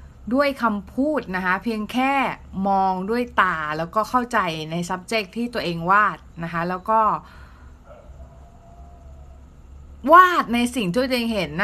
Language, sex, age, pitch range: Thai, female, 20-39, 175-235 Hz